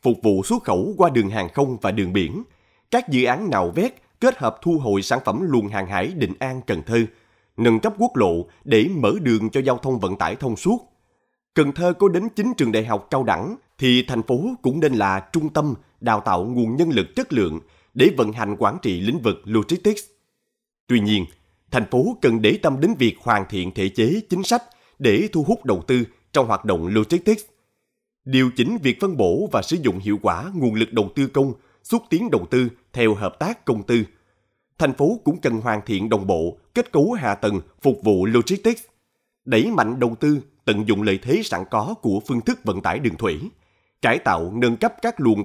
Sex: male